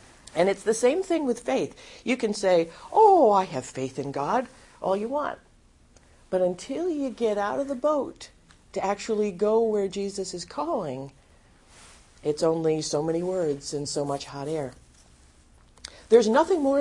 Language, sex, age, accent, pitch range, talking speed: English, female, 50-69, American, 150-235 Hz, 170 wpm